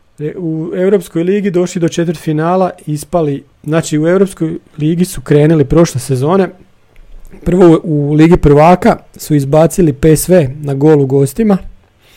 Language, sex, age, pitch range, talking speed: Croatian, male, 40-59, 145-180 Hz, 130 wpm